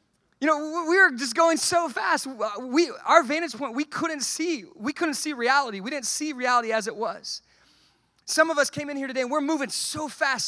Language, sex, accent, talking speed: English, male, American, 220 wpm